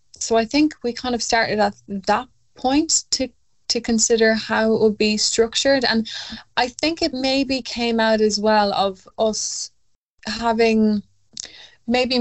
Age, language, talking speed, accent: 10-29, English, 150 wpm, Irish